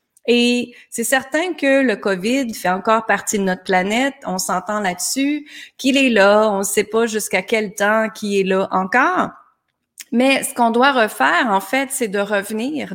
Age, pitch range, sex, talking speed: 30-49, 195-260 Hz, female, 180 wpm